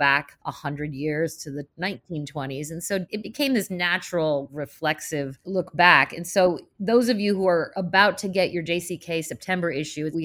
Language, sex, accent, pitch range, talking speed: English, female, American, 150-180 Hz, 175 wpm